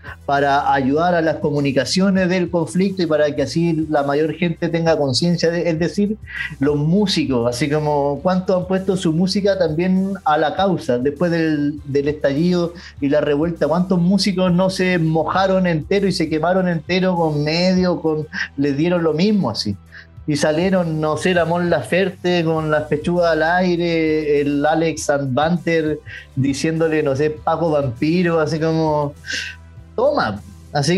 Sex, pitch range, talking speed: male, 150-185 Hz, 155 wpm